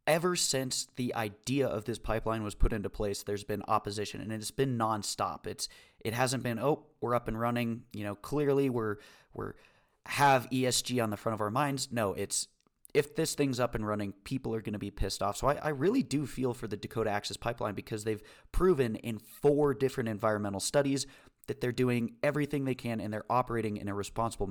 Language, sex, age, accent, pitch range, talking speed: English, male, 30-49, American, 105-140 Hz, 210 wpm